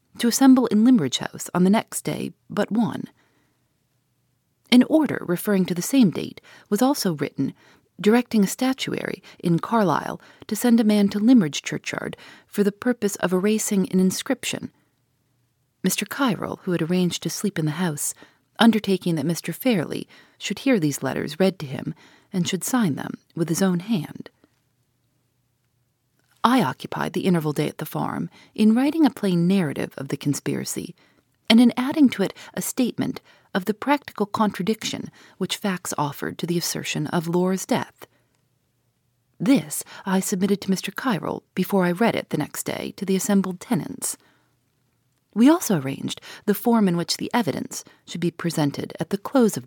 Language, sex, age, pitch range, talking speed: English, female, 40-59, 145-215 Hz, 165 wpm